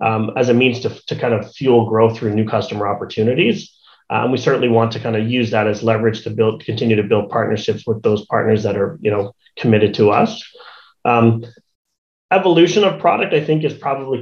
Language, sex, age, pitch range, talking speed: English, male, 30-49, 115-130 Hz, 205 wpm